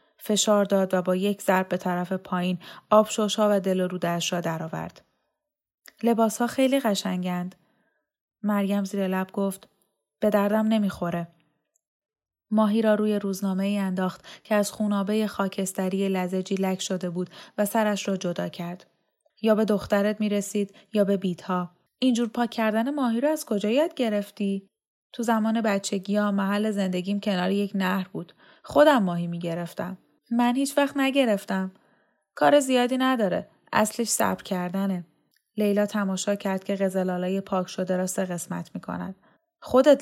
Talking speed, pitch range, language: 150 wpm, 190-220 Hz, Persian